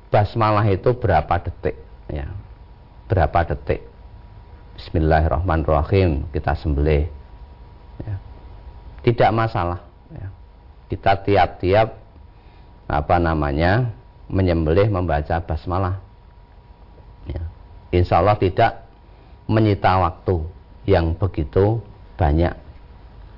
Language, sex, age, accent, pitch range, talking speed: Indonesian, male, 40-59, native, 80-105 Hz, 75 wpm